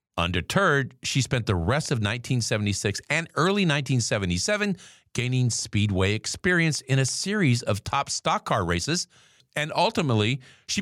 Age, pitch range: 50-69, 105-140 Hz